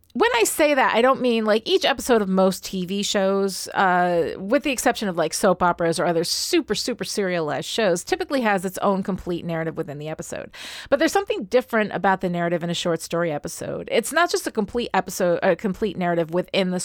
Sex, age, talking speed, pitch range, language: female, 30-49, 215 wpm, 175-225 Hz, English